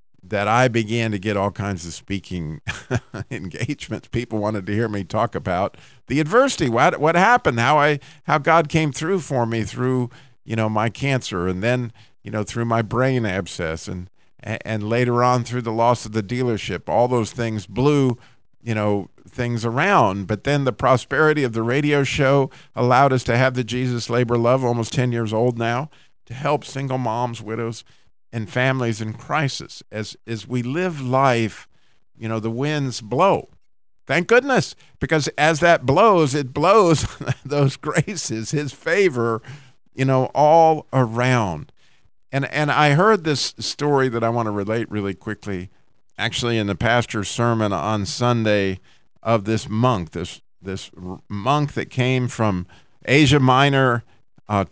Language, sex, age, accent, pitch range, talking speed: English, male, 50-69, American, 110-140 Hz, 165 wpm